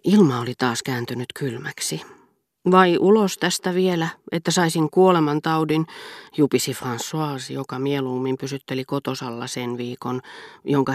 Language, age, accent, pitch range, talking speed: Finnish, 30-49, native, 125-160 Hz, 115 wpm